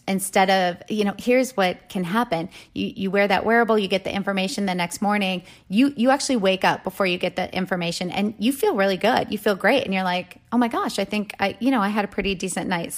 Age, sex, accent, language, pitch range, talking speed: 30-49, female, American, English, 185-225 Hz, 255 wpm